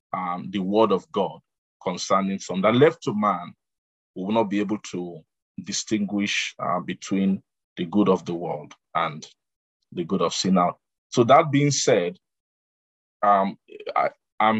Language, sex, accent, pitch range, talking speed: English, male, Nigerian, 95-115 Hz, 145 wpm